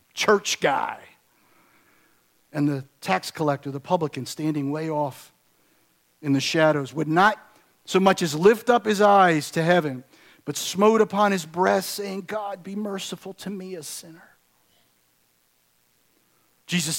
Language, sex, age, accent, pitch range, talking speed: English, male, 50-69, American, 145-185 Hz, 140 wpm